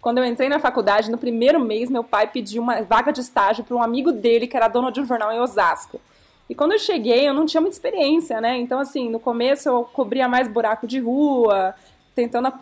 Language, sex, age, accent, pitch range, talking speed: Portuguese, female, 20-39, Brazilian, 230-275 Hz, 230 wpm